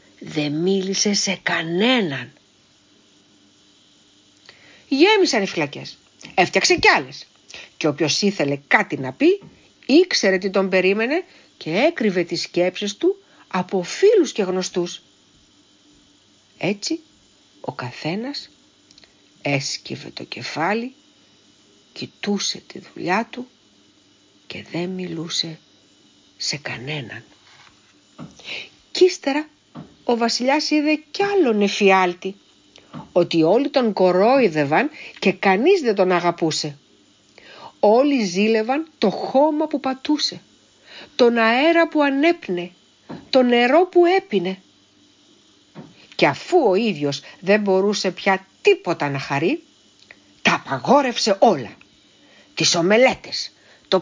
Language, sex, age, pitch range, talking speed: Greek, female, 60-79, 175-285 Hz, 100 wpm